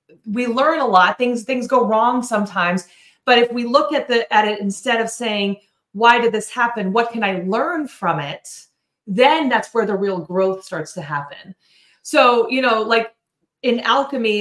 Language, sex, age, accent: English, female, 30-49, American